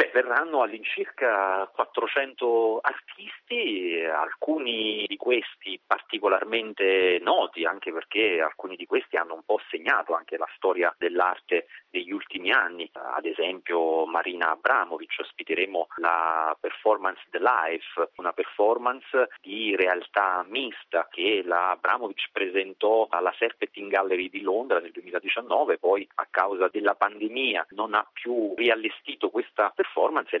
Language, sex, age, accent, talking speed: Italian, male, 30-49, native, 120 wpm